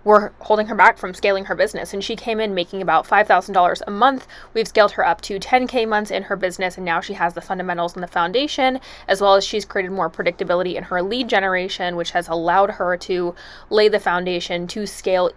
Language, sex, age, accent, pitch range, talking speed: English, female, 20-39, American, 180-215 Hz, 225 wpm